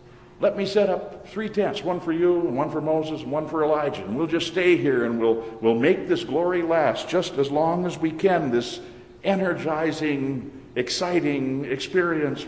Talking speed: 190 wpm